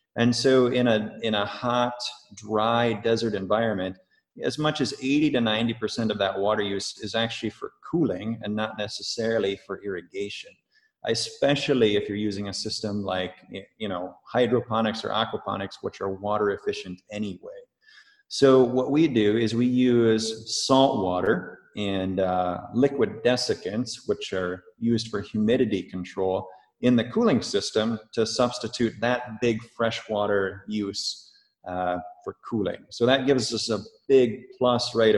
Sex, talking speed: male, 150 wpm